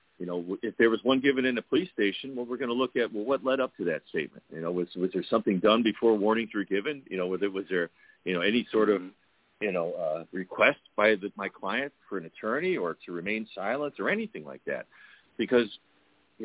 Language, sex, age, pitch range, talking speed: English, male, 50-69, 95-120 Hz, 245 wpm